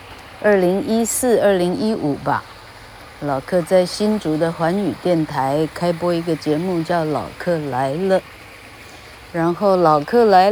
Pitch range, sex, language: 145-195 Hz, female, Chinese